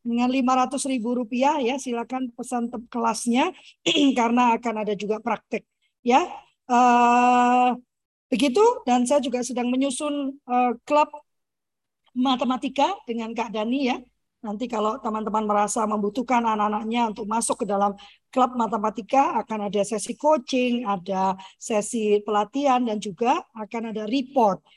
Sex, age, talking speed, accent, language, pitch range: female, 20-39, 130 wpm, native, Indonesian, 225-270 Hz